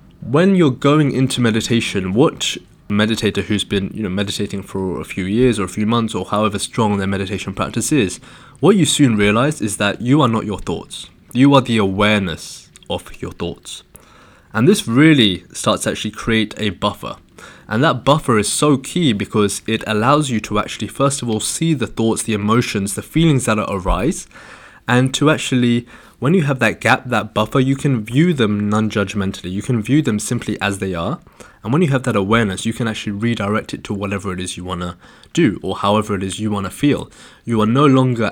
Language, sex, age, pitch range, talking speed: English, male, 20-39, 100-125 Hz, 210 wpm